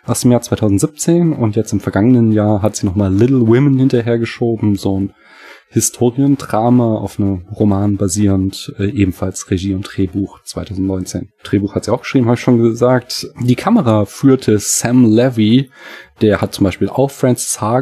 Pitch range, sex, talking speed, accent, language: 105-130 Hz, male, 165 wpm, German, German